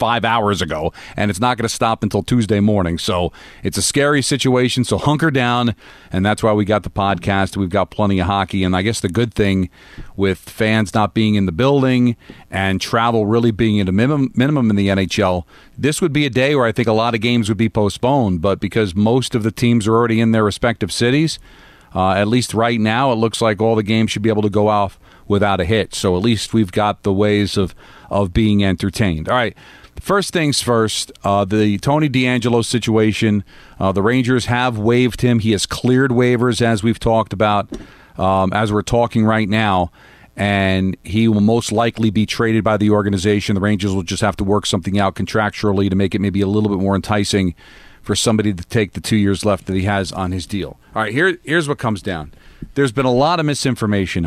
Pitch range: 100-120 Hz